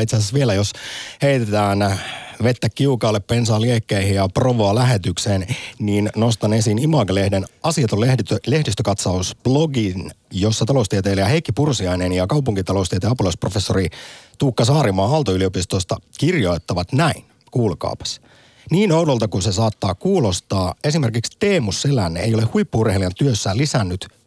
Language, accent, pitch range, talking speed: Finnish, native, 100-150 Hz, 105 wpm